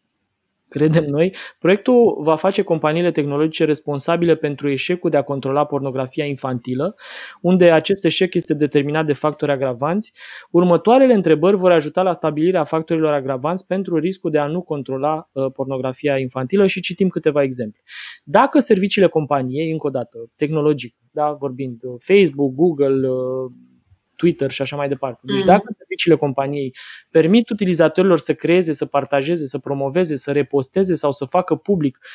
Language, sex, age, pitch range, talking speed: Romanian, male, 20-39, 140-180 Hz, 145 wpm